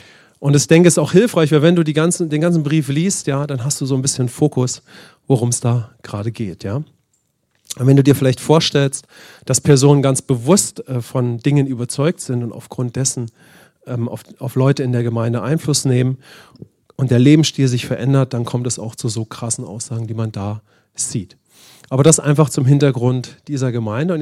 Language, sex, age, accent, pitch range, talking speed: English, male, 40-59, German, 125-160 Hz, 195 wpm